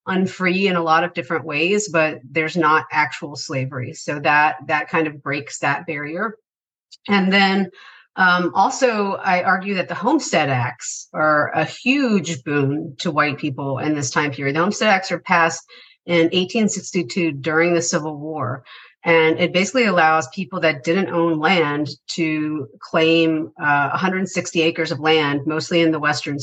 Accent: American